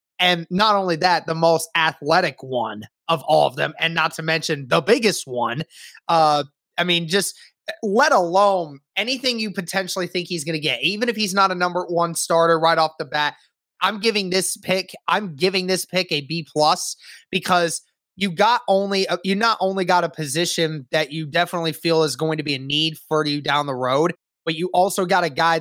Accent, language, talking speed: American, English, 200 wpm